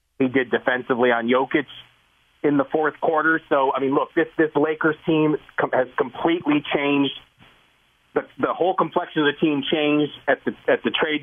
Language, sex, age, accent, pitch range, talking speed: English, male, 40-59, American, 125-150 Hz, 175 wpm